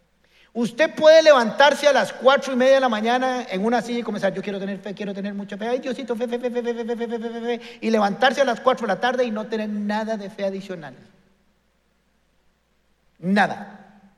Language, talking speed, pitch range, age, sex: Spanish, 210 wpm, 185-255 Hz, 50-69, male